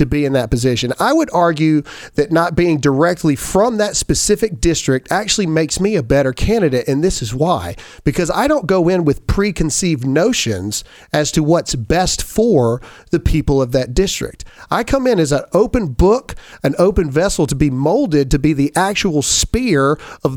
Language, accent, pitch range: English, American, 135-175 Hz